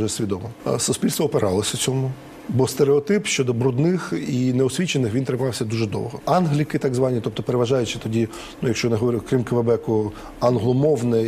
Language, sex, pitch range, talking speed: English, male, 125-155 Hz, 160 wpm